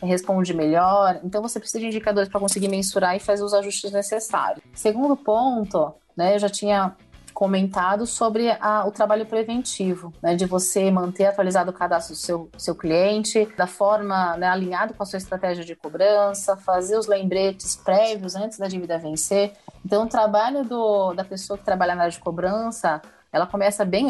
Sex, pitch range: female, 180-220 Hz